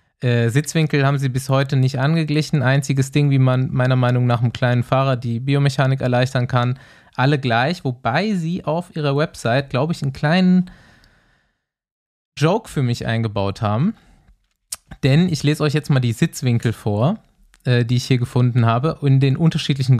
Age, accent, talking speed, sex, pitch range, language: 20-39, German, 170 wpm, male, 125-150 Hz, German